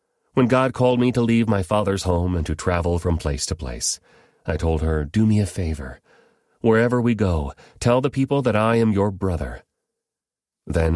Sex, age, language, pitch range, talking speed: male, 40-59, English, 80-110 Hz, 190 wpm